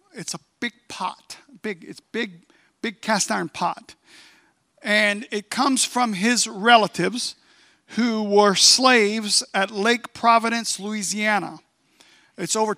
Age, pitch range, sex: 50-69, 195-255 Hz, male